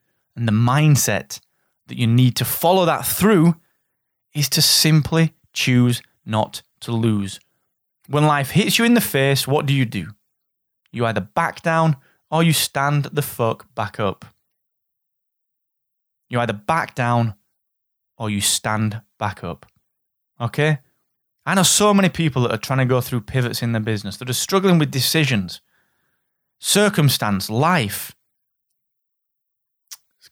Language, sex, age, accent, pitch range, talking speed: English, male, 20-39, British, 115-160 Hz, 145 wpm